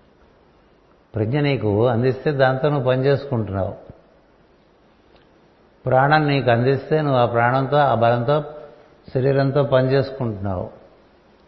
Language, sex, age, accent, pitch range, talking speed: Telugu, male, 60-79, native, 110-140 Hz, 85 wpm